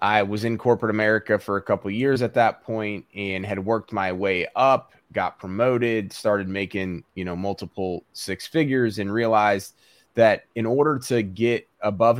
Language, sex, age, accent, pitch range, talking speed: English, male, 20-39, American, 100-115 Hz, 175 wpm